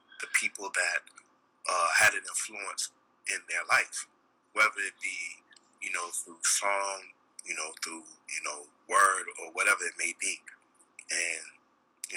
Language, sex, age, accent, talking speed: English, male, 30-49, American, 150 wpm